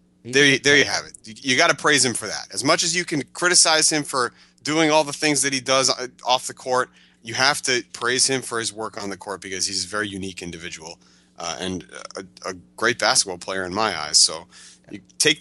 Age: 30-49